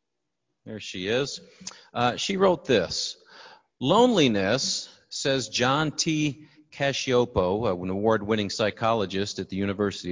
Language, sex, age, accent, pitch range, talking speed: English, male, 40-59, American, 100-150 Hz, 105 wpm